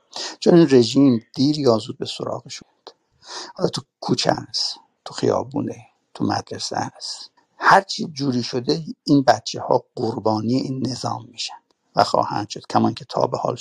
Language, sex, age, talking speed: Persian, male, 60-79, 150 wpm